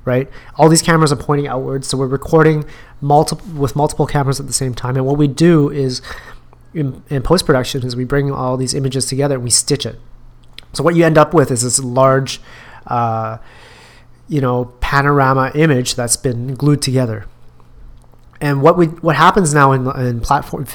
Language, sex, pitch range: English, male, 125-150 Hz